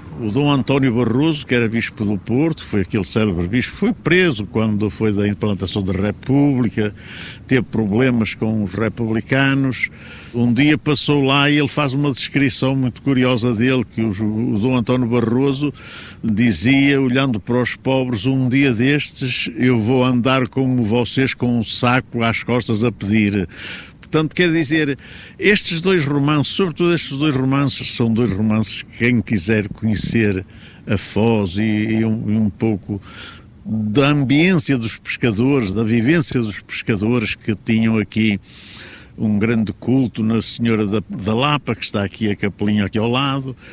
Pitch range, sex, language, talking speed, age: 110-130 Hz, male, Portuguese, 155 wpm, 60-79